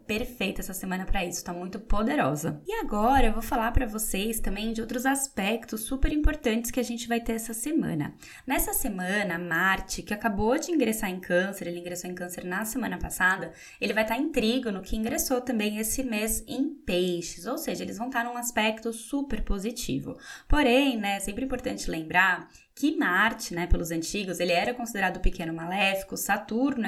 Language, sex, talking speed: Portuguese, female, 180 wpm